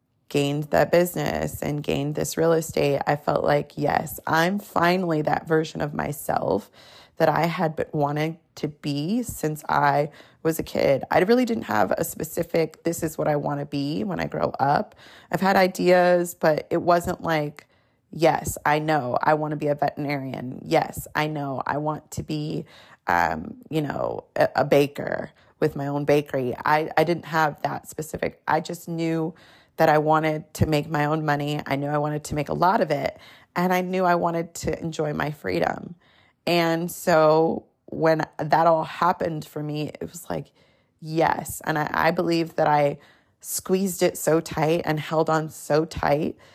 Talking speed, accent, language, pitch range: 185 wpm, American, English, 150-165 Hz